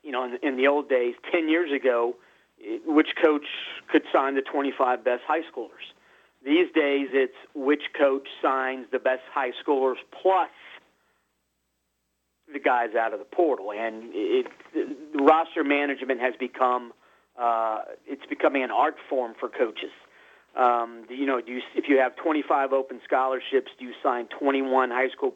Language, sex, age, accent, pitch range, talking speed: English, male, 40-59, American, 120-155 Hz, 150 wpm